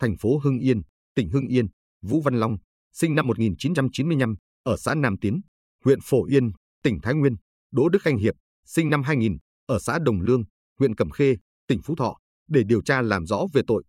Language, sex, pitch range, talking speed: Vietnamese, male, 95-135 Hz, 205 wpm